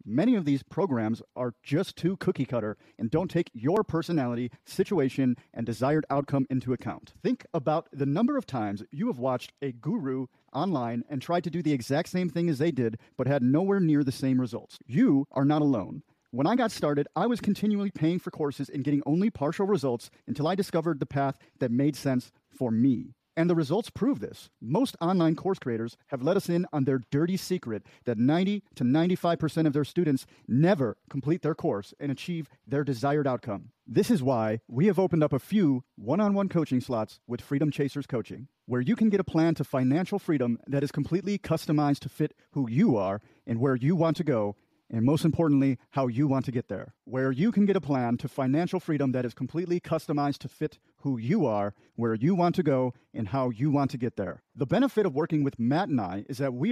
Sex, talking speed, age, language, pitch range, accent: male, 215 wpm, 40-59, English, 130-170 Hz, American